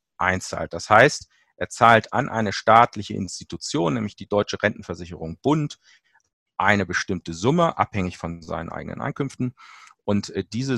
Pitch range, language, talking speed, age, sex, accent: 100-135 Hz, German, 135 wpm, 40-59, male, German